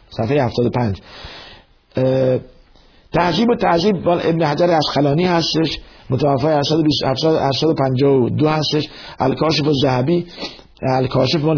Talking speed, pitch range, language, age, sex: 90 wpm, 115-150 Hz, Persian, 50-69, male